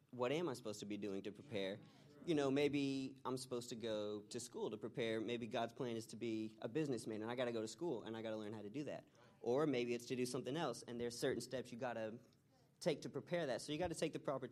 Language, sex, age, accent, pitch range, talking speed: English, male, 30-49, American, 105-135 Hz, 285 wpm